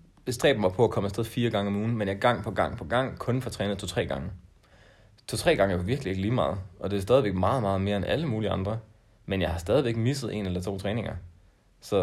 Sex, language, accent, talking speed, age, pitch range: male, Danish, native, 260 wpm, 30-49, 95-120 Hz